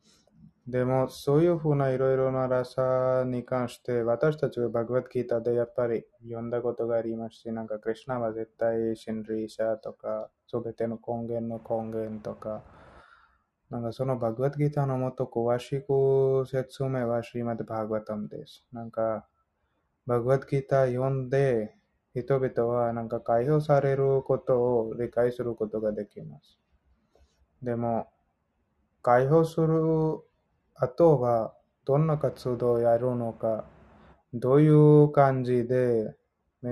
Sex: male